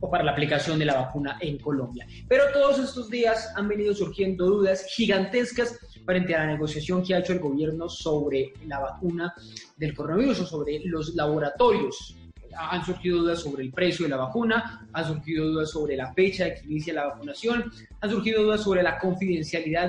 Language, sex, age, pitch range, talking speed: Spanish, male, 20-39, 150-185 Hz, 185 wpm